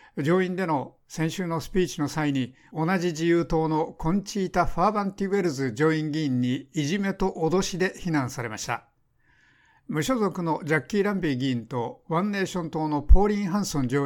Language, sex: Japanese, male